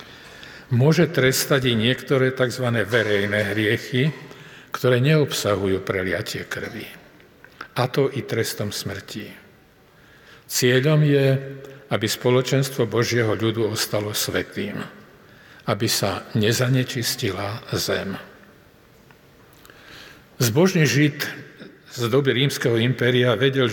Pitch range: 115-135 Hz